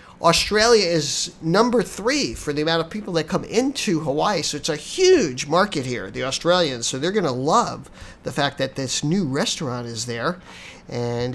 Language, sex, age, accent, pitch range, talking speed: English, male, 50-69, American, 140-190 Hz, 185 wpm